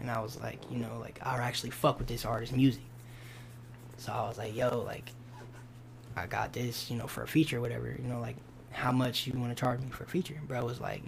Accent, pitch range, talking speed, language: American, 120-135 Hz, 255 wpm, English